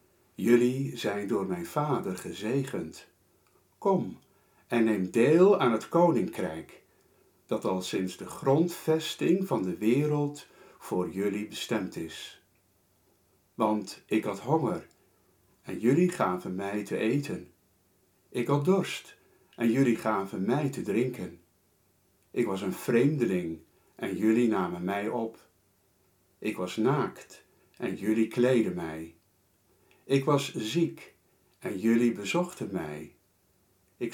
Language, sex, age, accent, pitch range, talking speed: Dutch, male, 50-69, Dutch, 95-145 Hz, 120 wpm